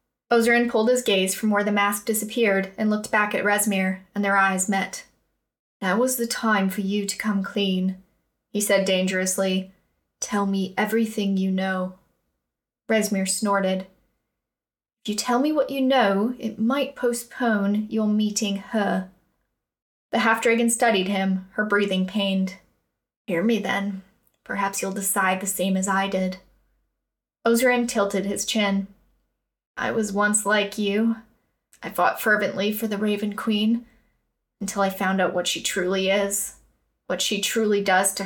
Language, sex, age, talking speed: English, female, 10-29, 155 wpm